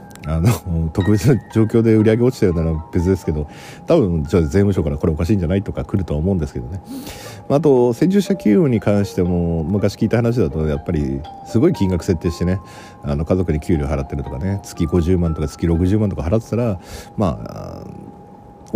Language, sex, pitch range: Japanese, male, 85-115 Hz